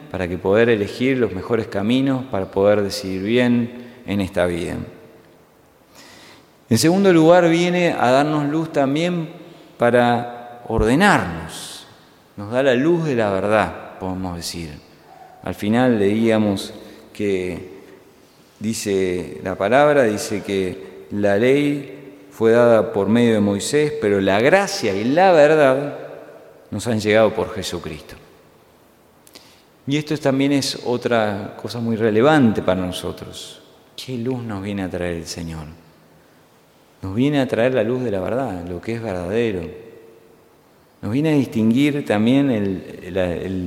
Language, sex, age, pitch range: Spanish, male, 40-59, 95-125 Hz